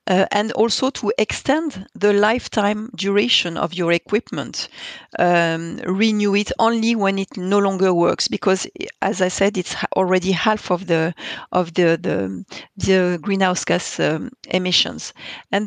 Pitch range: 185-215 Hz